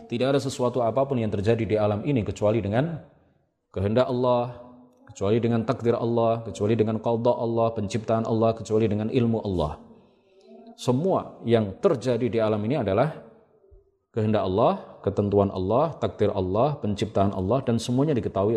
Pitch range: 105-125 Hz